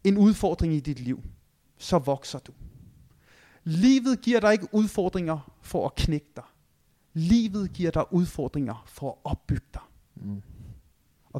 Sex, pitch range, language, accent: male, 145-195 Hz, Danish, native